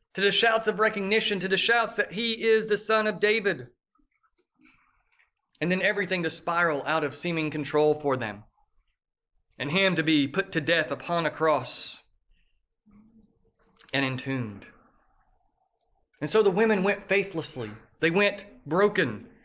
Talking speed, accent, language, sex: 145 wpm, American, English, male